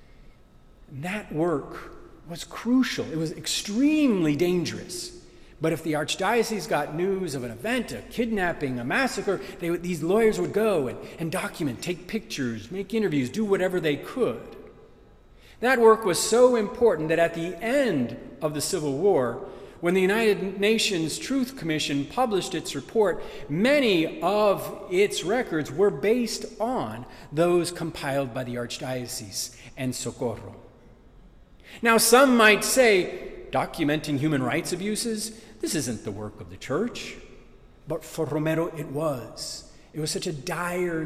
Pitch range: 150-215 Hz